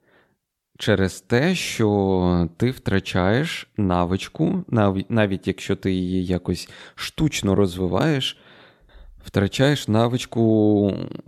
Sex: male